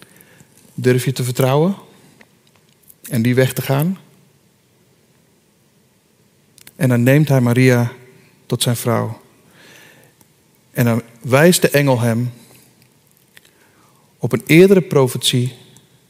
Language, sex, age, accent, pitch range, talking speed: Dutch, male, 40-59, Dutch, 125-155 Hz, 100 wpm